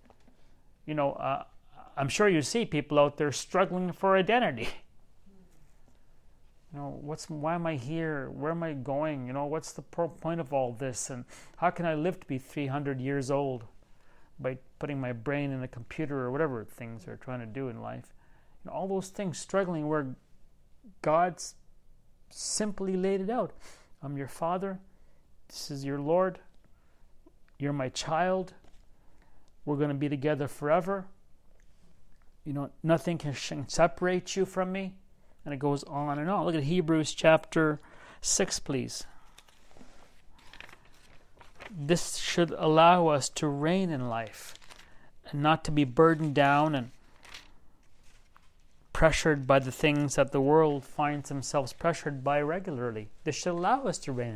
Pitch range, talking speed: 140-175 Hz, 155 wpm